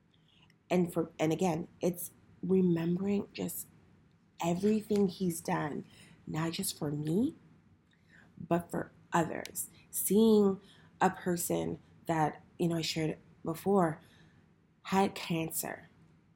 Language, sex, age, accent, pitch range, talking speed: English, female, 30-49, American, 165-185 Hz, 105 wpm